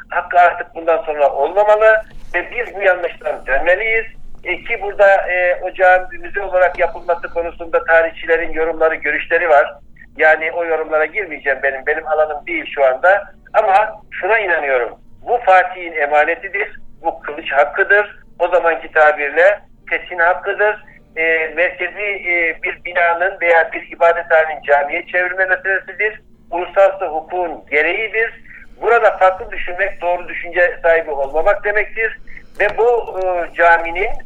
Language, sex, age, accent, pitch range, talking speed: Turkish, male, 60-79, native, 165-195 Hz, 130 wpm